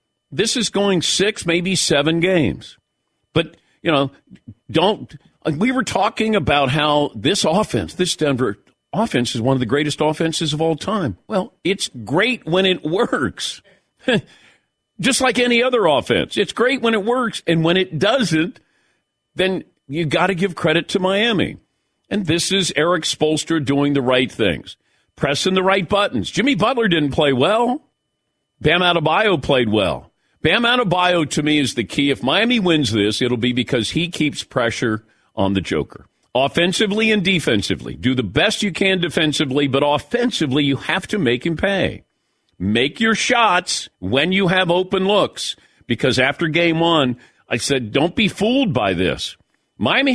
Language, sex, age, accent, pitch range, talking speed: English, male, 50-69, American, 140-195 Hz, 165 wpm